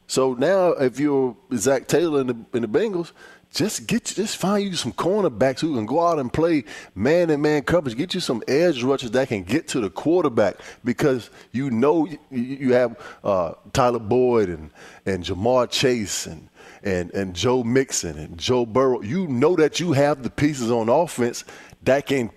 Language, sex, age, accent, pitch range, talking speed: English, male, 20-39, American, 115-140 Hz, 190 wpm